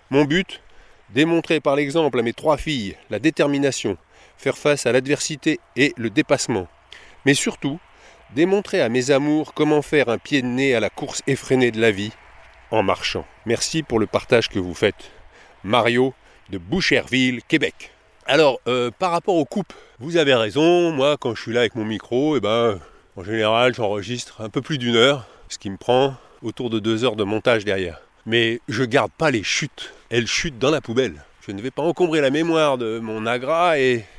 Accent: French